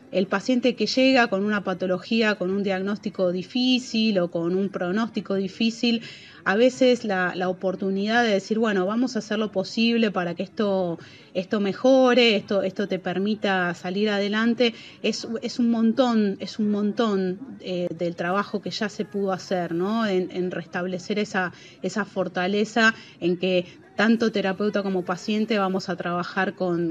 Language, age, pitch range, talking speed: Spanish, 30-49, 180-215 Hz, 160 wpm